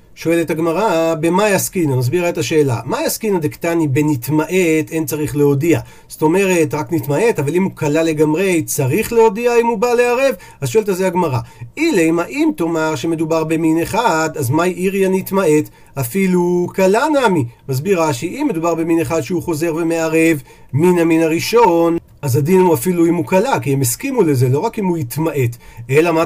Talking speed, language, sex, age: 175 wpm, Hebrew, male, 40-59